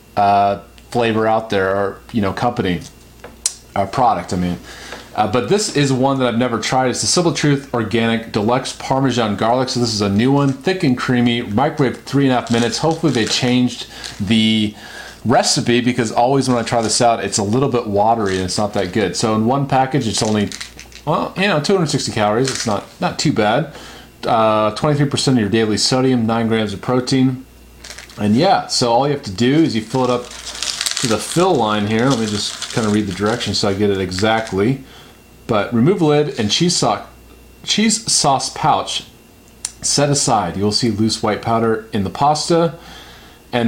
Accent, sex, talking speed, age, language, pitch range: American, male, 195 wpm, 30-49, English, 105-135 Hz